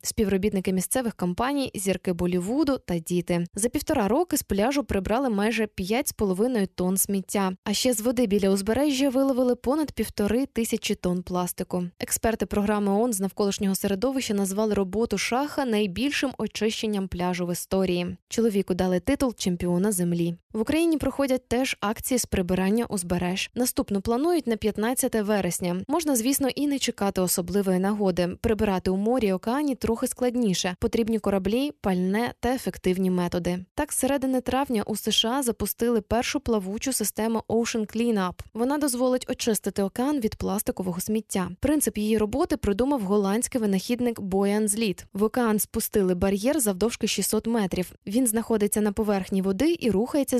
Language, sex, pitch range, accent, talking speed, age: Ukrainian, female, 195-245 Hz, native, 145 wpm, 10-29